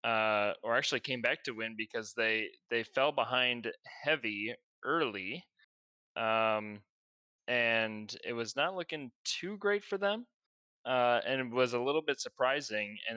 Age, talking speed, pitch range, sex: 20-39, 150 wpm, 115-145 Hz, male